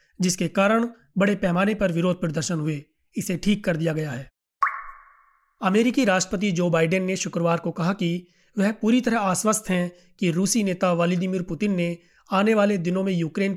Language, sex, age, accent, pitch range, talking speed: Hindi, male, 30-49, native, 175-205 Hz, 175 wpm